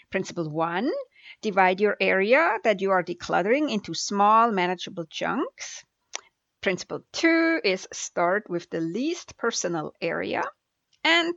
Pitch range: 180-270 Hz